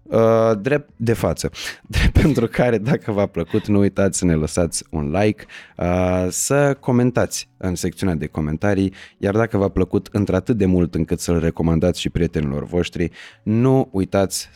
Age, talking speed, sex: 20-39, 160 wpm, male